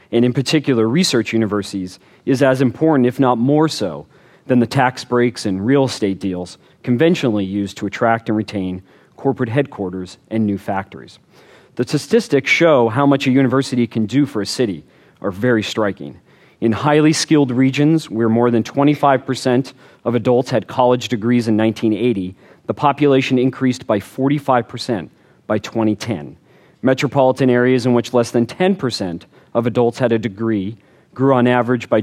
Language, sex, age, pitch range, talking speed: English, male, 40-59, 110-135 Hz, 155 wpm